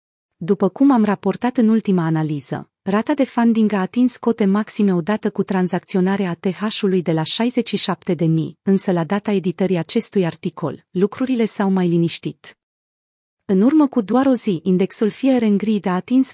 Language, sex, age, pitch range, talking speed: Romanian, female, 30-49, 175-225 Hz, 155 wpm